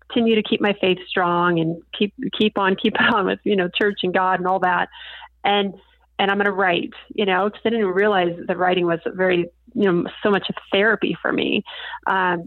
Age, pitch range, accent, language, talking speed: 30-49, 185-220 Hz, American, English, 225 wpm